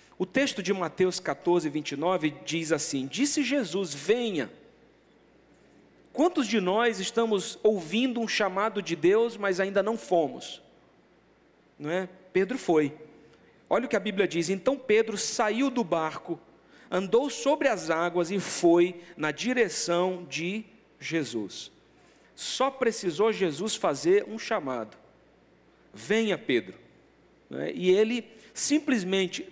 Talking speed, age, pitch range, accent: 125 wpm, 50-69, 170-230 Hz, Brazilian